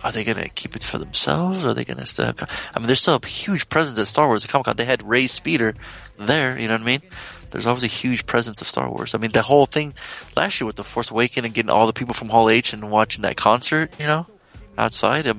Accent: American